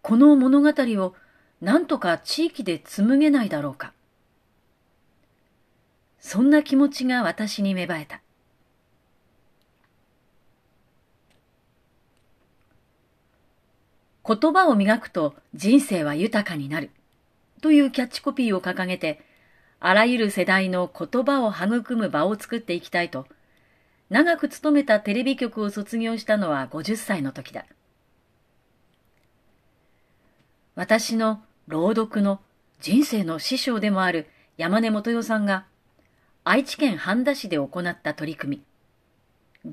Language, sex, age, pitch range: Japanese, female, 40-59, 175-250 Hz